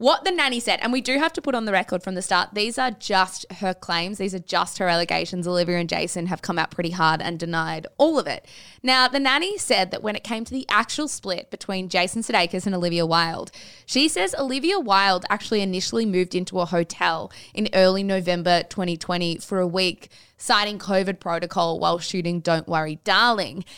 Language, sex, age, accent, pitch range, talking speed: English, female, 20-39, Australian, 180-235 Hz, 205 wpm